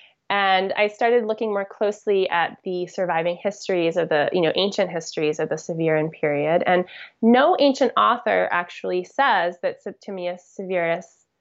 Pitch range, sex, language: 175-220 Hz, female, English